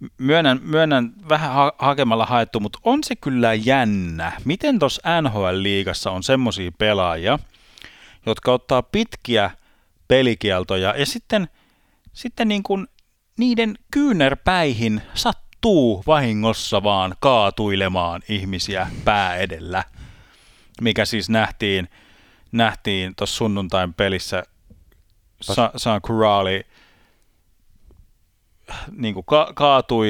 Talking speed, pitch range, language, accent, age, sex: 95 wpm, 95-135 Hz, Finnish, native, 30-49, male